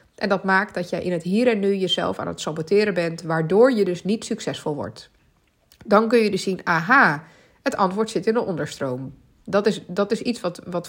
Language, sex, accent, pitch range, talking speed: Dutch, female, Dutch, 180-240 Hz, 220 wpm